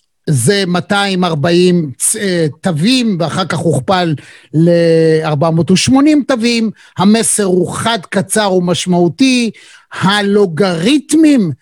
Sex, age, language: male, 50-69, Hebrew